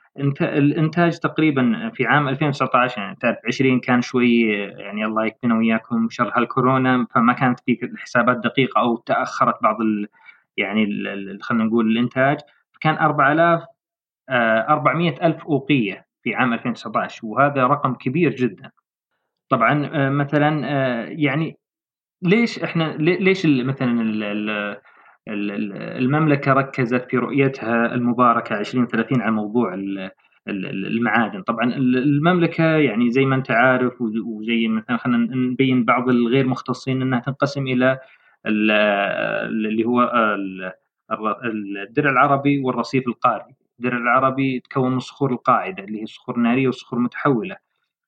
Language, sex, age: Arabic, male, 20-39